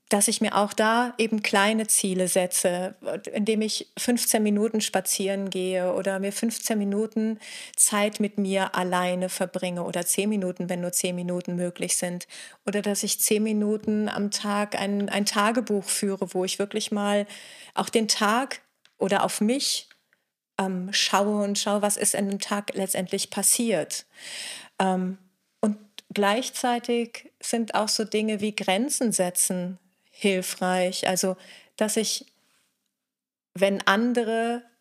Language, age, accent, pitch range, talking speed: German, 40-59, German, 195-220 Hz, 140 wpm